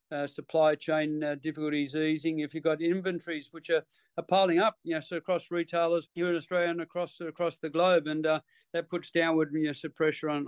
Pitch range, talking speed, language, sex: 150-170 Hz, 220 wpm, English, male